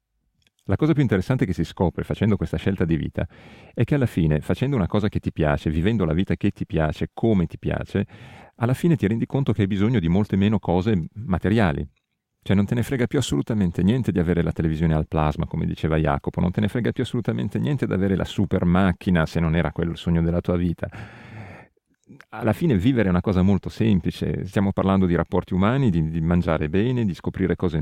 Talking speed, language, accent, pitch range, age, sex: 220 wpm, Italian, native, 85-110 Hz, 40-59, male